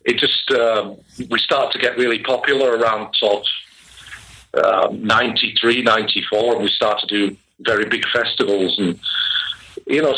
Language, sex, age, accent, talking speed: English, male, 50-69, British, 155 wpm